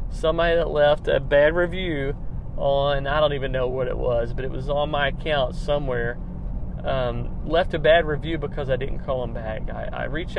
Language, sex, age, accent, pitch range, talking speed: English, male, 40-59, American, 125-155 Hz, 200 wpm